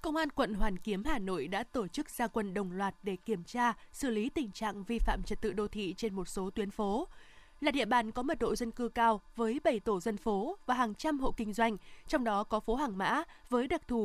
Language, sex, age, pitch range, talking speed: Vietnamese, female, 20-39, 210-265 Hz, 260 wpm